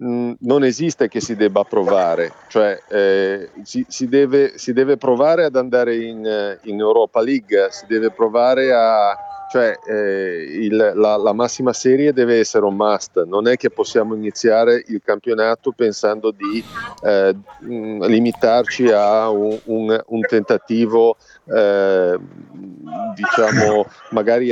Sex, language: male, Italian